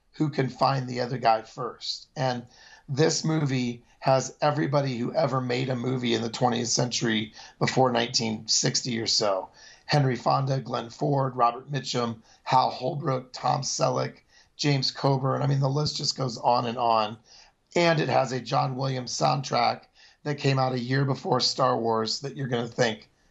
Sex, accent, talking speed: male, American, 170 wpm